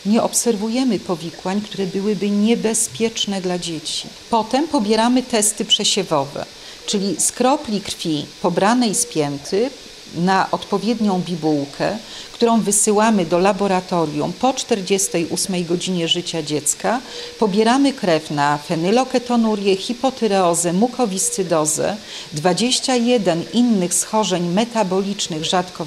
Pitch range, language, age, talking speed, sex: 170-230 Hz, Polish, 40-59, 95 wpm, female